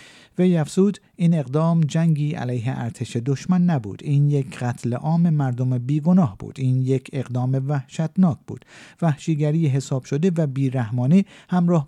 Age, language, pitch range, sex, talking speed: 50-69, Persian, 125-165 Hz, male, 135 wpm